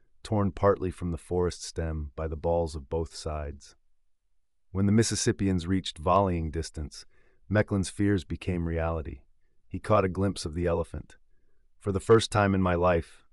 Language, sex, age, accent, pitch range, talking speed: English, male, 30-49, American, 80-95 Hz, 160 wpm